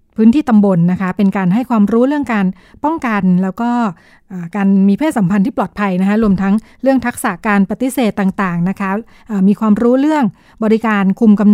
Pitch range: 190-225 Hz